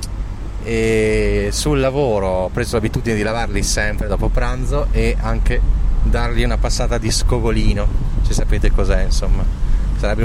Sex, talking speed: male, 140 wpm